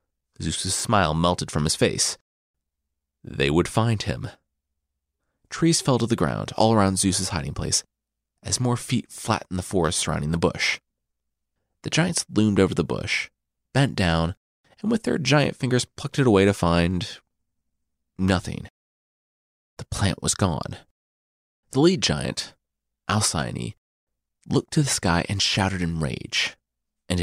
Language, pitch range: English, 75-115 Hz